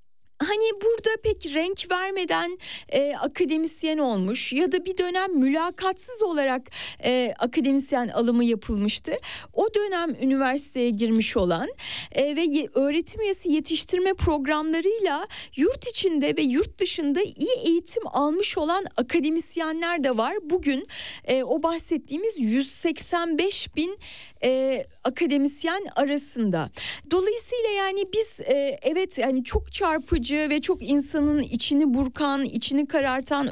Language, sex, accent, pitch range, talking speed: Turkish, female, native, 260-360 Hz, 115 wpm